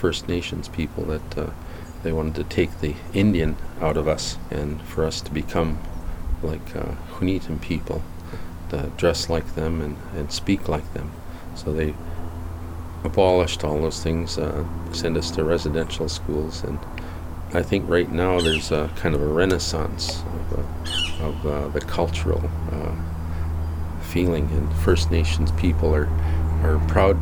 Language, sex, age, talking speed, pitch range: English, male, 40-59, 155 wpm, 75-85 Hz